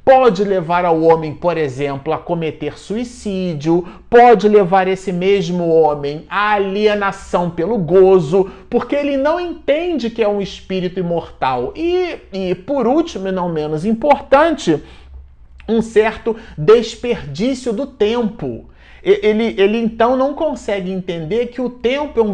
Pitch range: 170-240 Hz